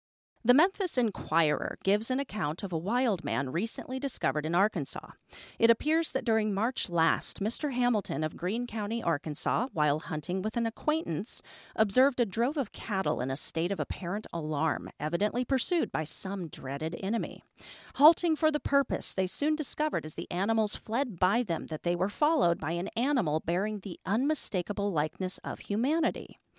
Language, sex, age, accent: English, female, 40-59, American